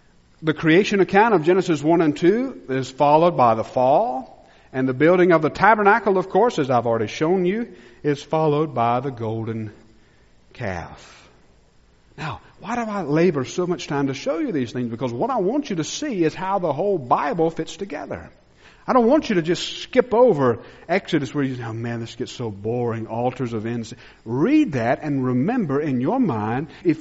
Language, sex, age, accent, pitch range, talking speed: English, male, 50-69, American, 125-190 Hz, 195 wpm